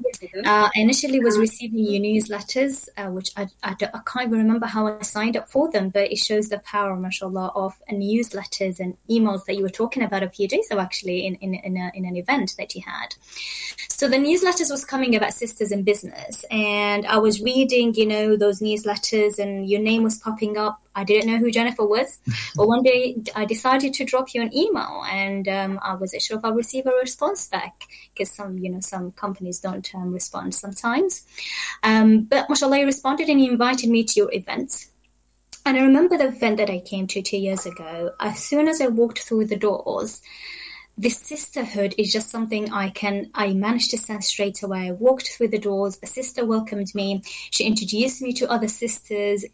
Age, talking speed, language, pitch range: 20-39, 210 wpm, English, 195-240 Hz